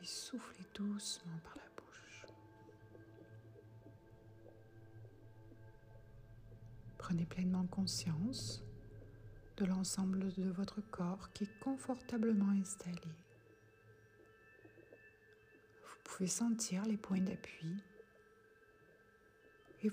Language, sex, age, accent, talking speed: French, female, 60-79, French, 75 wpm